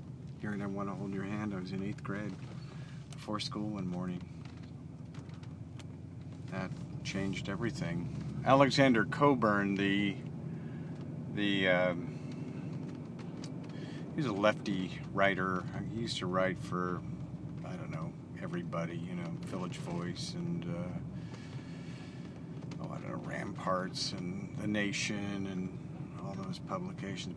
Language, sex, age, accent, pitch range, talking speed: English, male, 50-69, American, 105-150 Hz, 125 wpm